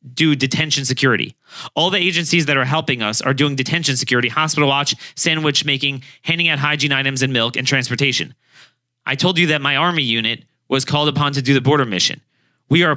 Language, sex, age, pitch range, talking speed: English, male, 30-49, 125-160 Hz, 200 wpm